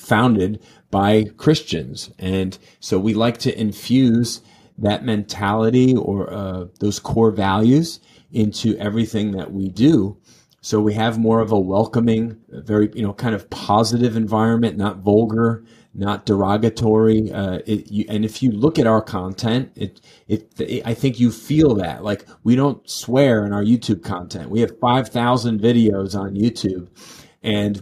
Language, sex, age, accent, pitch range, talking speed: English, male, 40-59, American, 100-115 Hz, 155 wpm